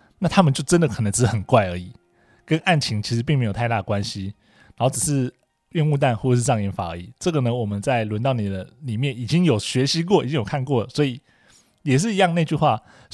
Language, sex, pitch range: Chinese, male, 110-155 Hz